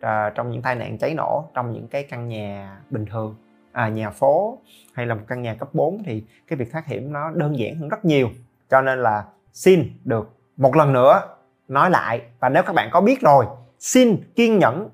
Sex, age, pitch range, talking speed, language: male, 20-39, 115-150 Hz, 220 wpm, Vietnamese